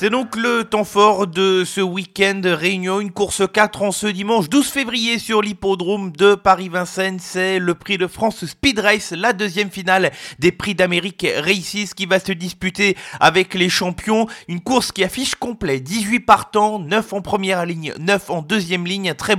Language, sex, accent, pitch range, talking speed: French, male, French, 175-210 Hz, 180 wpm